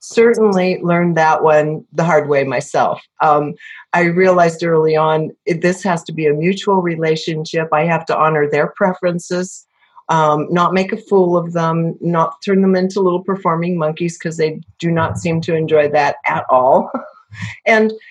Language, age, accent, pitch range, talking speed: English, 40-59, American, 155-200 Hz, 170 wpm